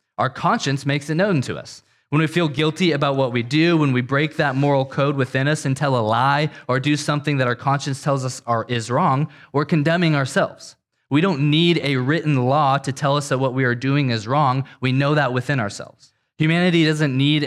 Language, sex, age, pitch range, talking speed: English, male, 20-39, 125-150 Hz, 220 wpm